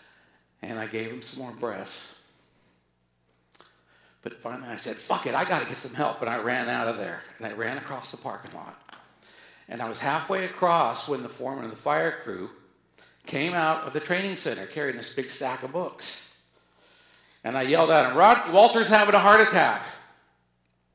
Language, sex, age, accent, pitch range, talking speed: English, male, 50-69, American, 115-165 Hz, 190 wpm